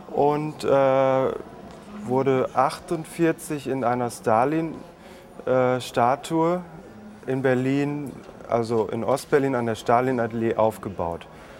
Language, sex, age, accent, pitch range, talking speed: German, male, 30-49, German, 115-160 Hz, 90 wpm